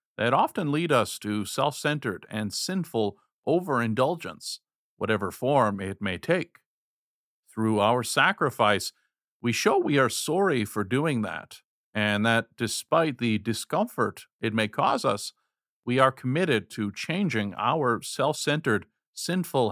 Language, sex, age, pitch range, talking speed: English, male, 50-69, 105-135 Hz, 130 wpm